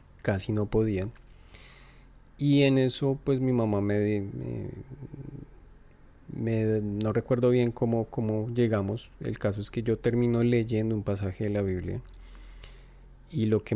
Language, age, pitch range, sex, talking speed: Spanish, 30-49, 95-115 Hz, male, 145 wpm